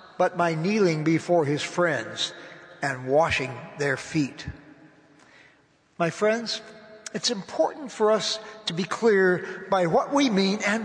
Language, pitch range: English, 170-215 Hz